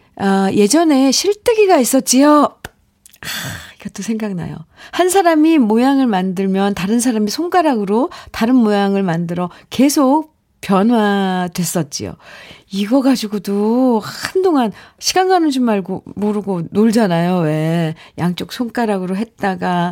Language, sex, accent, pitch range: Korean, female, native, 180-265 Hz